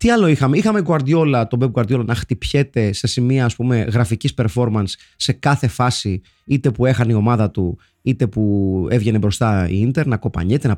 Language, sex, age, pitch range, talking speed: Greek, male, 20-39, 100-135 Hz, 175 wpm